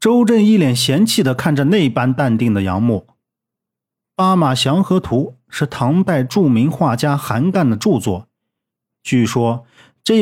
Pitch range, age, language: 120-185 Hz, 40-59, Chinese